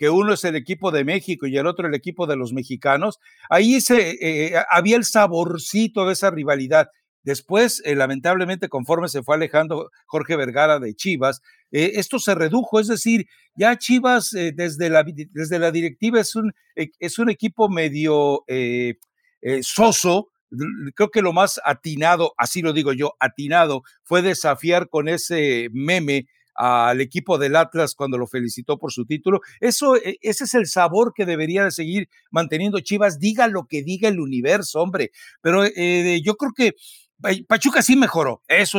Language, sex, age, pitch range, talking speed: Spanish, male, 60-79, 150-210 Hz, 165 wpm